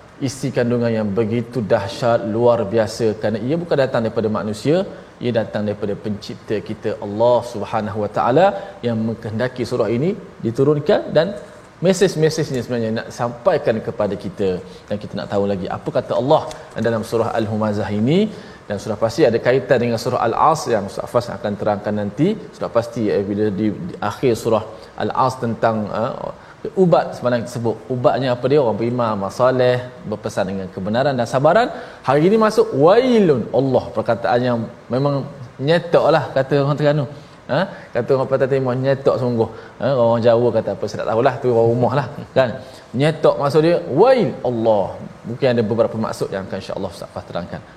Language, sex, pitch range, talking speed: Malayalam, male, 115-145 Hz, 165 wpm